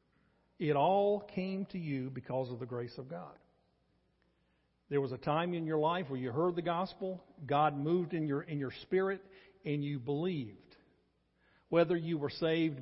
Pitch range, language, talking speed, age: 145-210 Hz, English, 175 wpm, 50-69